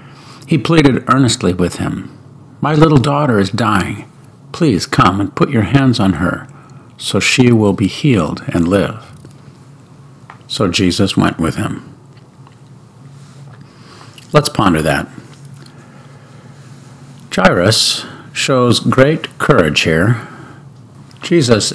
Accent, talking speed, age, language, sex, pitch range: American, 110 wpm, 50-69, English, male, 105-140 Hz